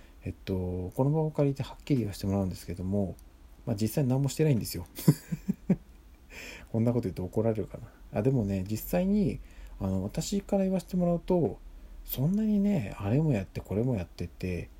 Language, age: Japanese, 40-59